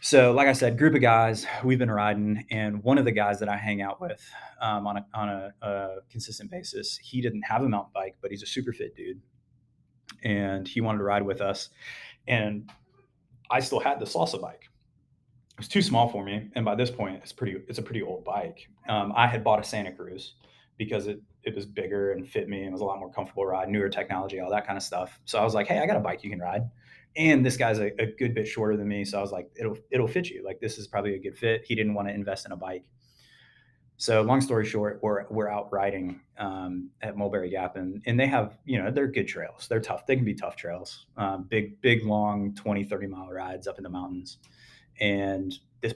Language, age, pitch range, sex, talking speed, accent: English, 20-39, 100-125 Hz, male, 245 wpm, American